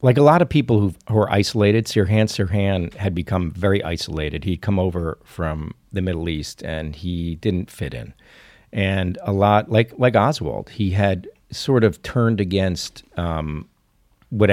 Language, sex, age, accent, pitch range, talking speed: English, male, 50-69, American, 90-110 Hz, 165 wpm